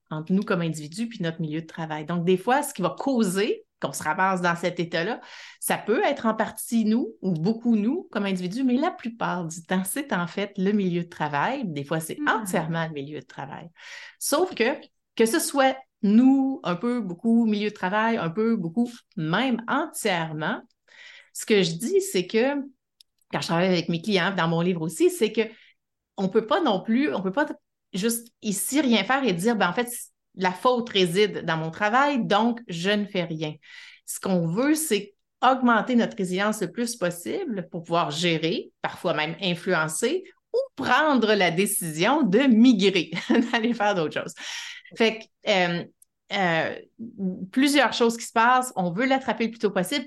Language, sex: French, female